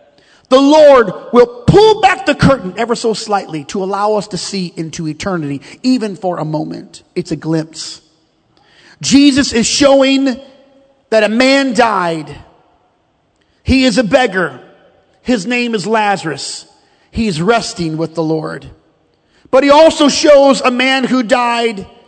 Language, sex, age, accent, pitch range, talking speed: English, male, 40-59, American, 175-265 Hz, 140 wpm